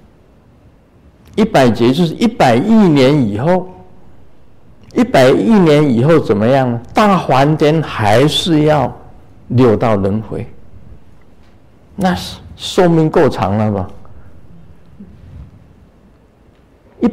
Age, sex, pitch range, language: 50-69, male, 100-150 Hz, Chinese